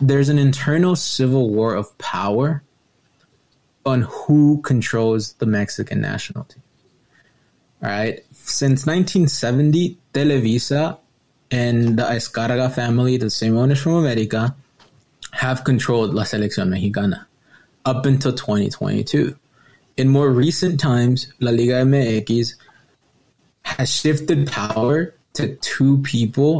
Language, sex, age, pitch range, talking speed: English, male, 20-39, 115-140 Hz, 110 wpm